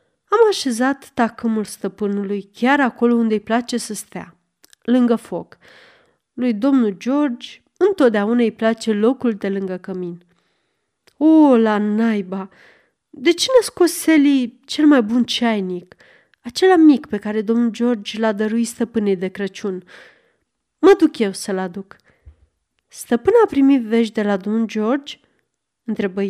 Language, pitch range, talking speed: Romanian, 205-275 Hz, 135 wpm